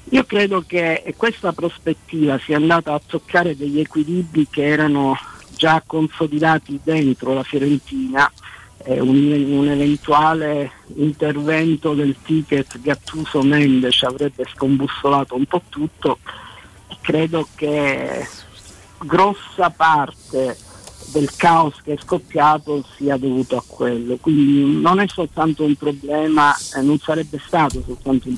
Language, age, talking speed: Italian, 50-69, 115 wpm